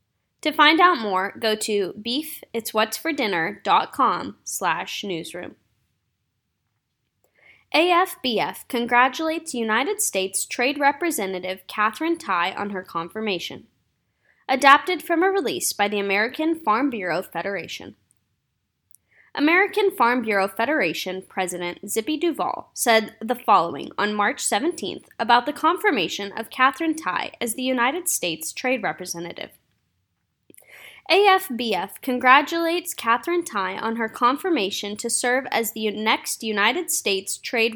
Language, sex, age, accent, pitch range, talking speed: English, female, 10-29, American, 200-305 Hz, 110 wpm